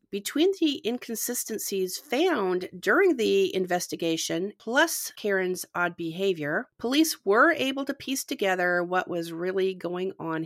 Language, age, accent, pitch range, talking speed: English, 40-59, American, 175-230 Hz, 125 wpm